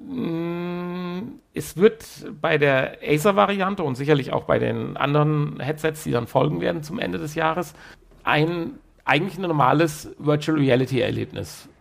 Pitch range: 130-165 Hz